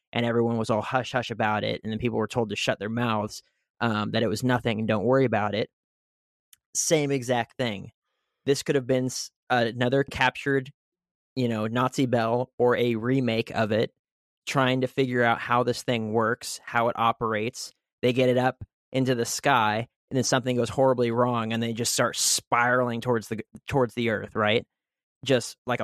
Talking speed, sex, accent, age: 190 wpm, male, American, 20-39